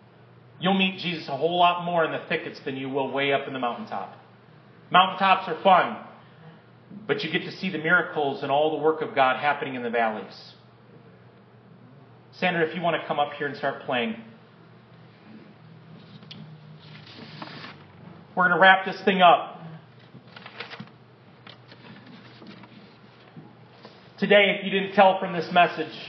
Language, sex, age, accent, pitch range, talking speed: English, male, 30-49, American, 155-190 Hz, 145 wpm